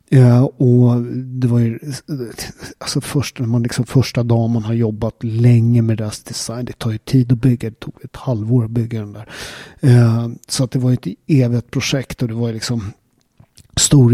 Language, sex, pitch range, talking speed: Swedish, male, 115-130 Hz, 195 wpm